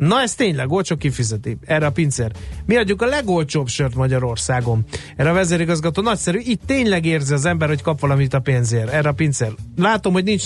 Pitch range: 130-180 Hz